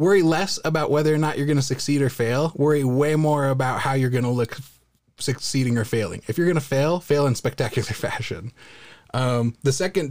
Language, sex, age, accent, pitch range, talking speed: English, male, 20-39, American, 120-150 Hz, 215 wpm